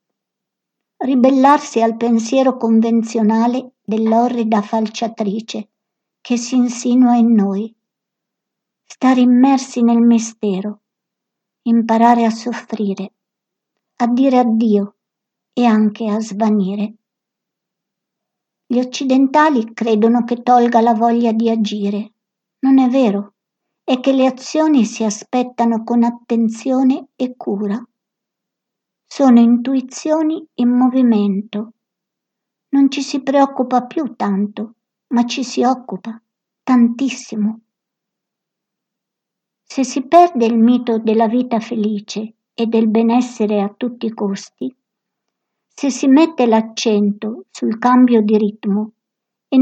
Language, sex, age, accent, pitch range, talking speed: Italian, male, 60-79, native, 215-250 Hz, 105 wpm